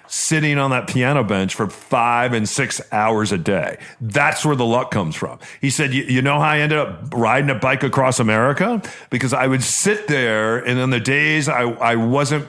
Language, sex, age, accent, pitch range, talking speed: English, male, 40-59, American, 125-155 Hz, 210 wpm